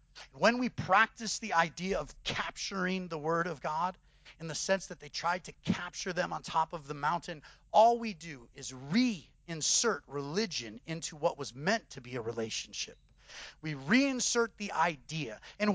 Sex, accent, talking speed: male, American, 170 wpm